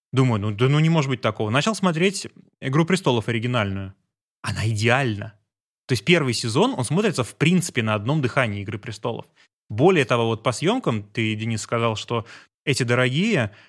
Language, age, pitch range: Russian, 20-39, 110-140 Hz